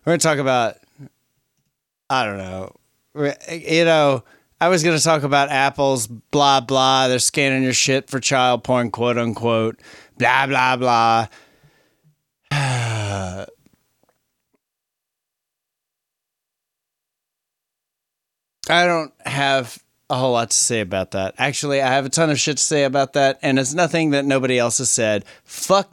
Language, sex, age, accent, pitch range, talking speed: English, male, 30-49, American, 115-150 Hz, 140 wpm